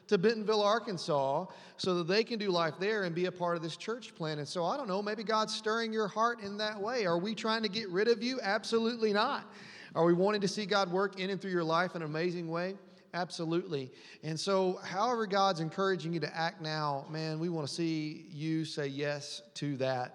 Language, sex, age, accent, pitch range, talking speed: English, male, 30-49, American, 155-200 Hz, 230 wpm